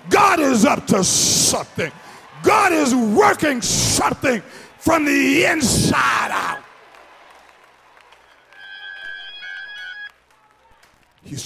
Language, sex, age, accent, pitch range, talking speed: English, male, 50-69, American, 155-250 Hz, 75 wpm